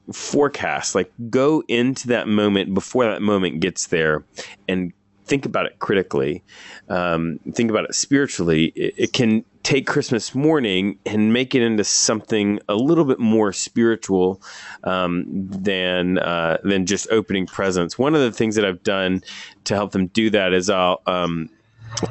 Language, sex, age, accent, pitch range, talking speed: English, male, 30-49, American, 95-115 Hz, 165 wpm